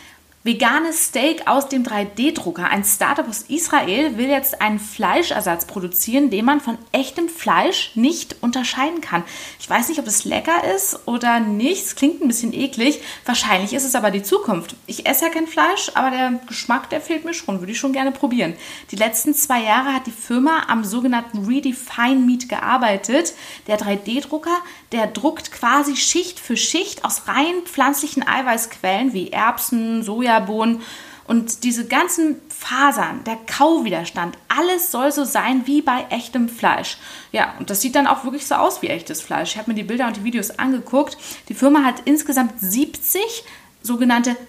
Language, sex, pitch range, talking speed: German, female, 225-295 Hz, 170 wpm